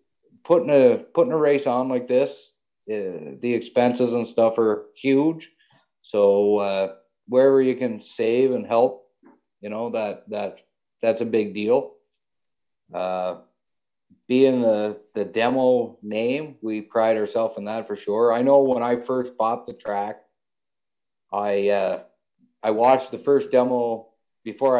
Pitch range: 105-135 Hz